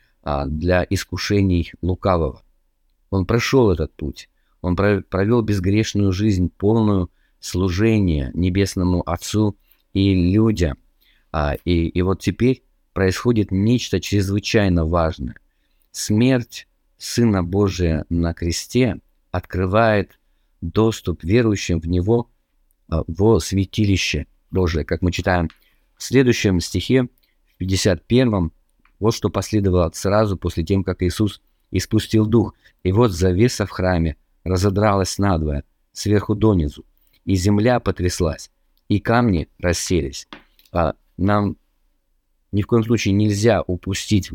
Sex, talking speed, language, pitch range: male, 105 wpm, Russian, 85-105 Hz